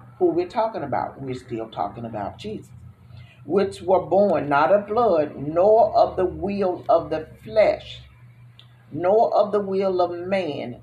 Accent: American